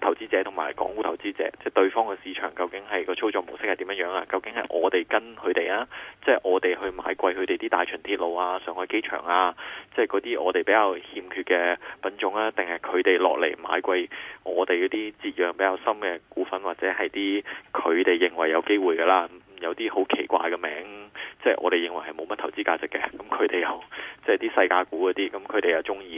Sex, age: male, 20-39